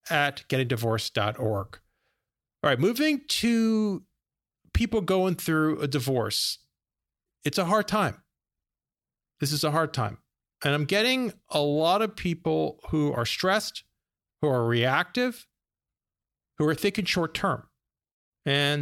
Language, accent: English, American